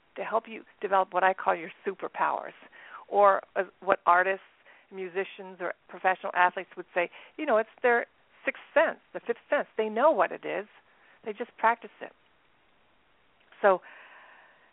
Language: English